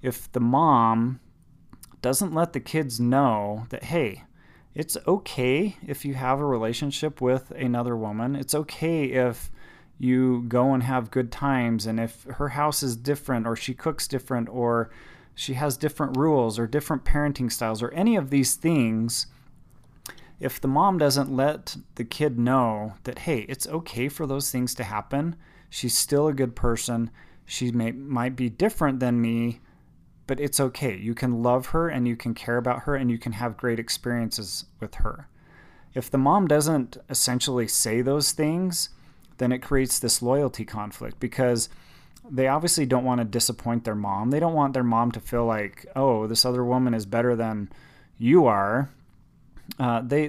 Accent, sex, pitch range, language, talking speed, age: American, male, 120-140 Hz, English, 170 wpm, 30-49